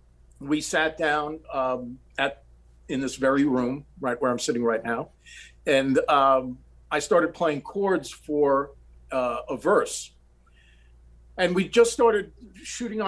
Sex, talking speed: male, 140 wpm